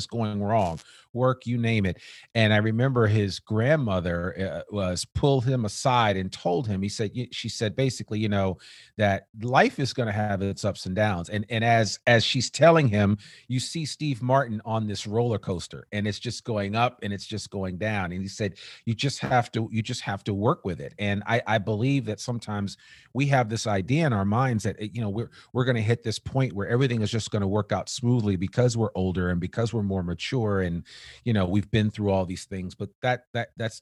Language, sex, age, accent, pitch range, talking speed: English, male, 40-59, American, 95-115 Hz, 225 wpm